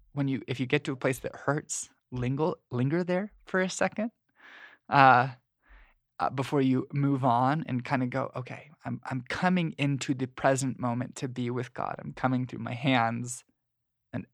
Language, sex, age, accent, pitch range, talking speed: English, male, 20-39, American, 125-140 Hz, 185 wpm